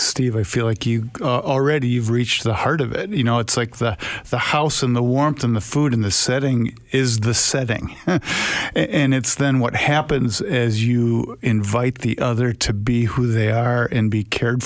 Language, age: English, 50-69